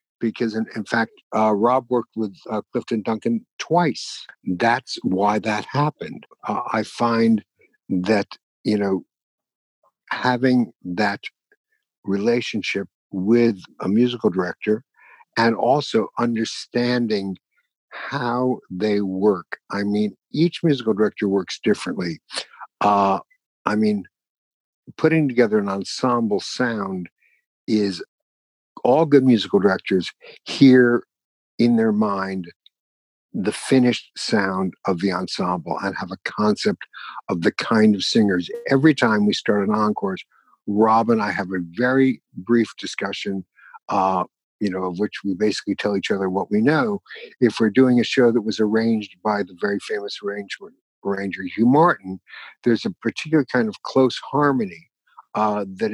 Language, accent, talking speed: English, American, 135 wpm